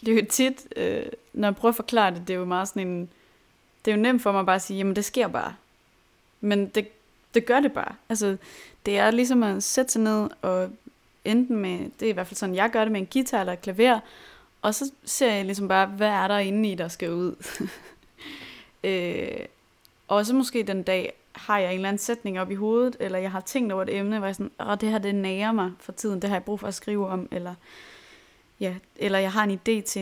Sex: female